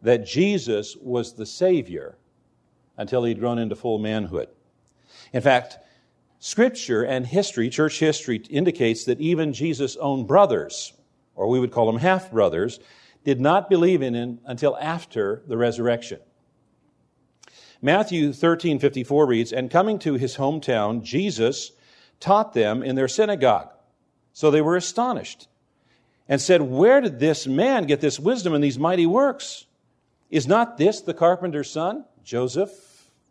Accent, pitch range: American, 125-180 Hz